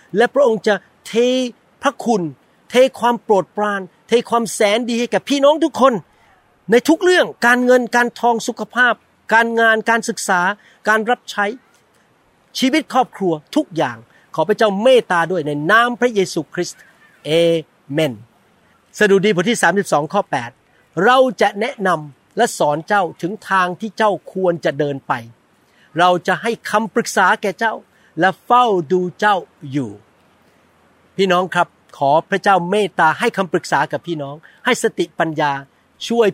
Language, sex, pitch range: Thai, male, 160-225 Hz